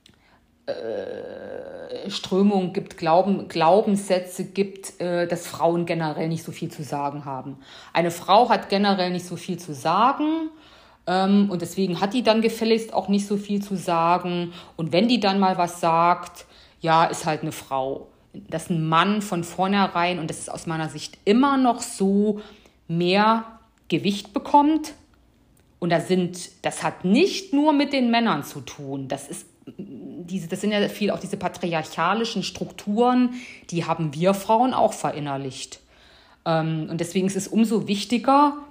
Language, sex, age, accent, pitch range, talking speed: German, female, 50-69, German, 170-220 Hz, 150 wpm